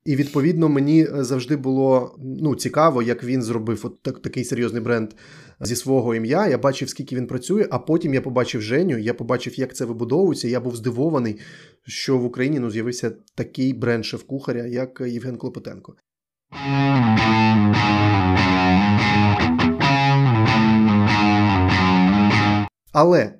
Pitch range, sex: 115-140 Hz, male